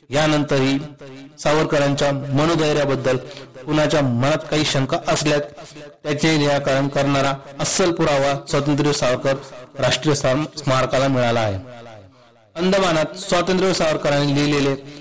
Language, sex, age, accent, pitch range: Marathi, male, 30-49, native, 135-165 Hz